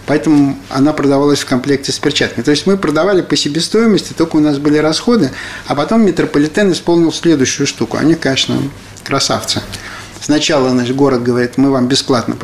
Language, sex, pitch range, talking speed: Russian, male, 125-160 Hz, 165 wpm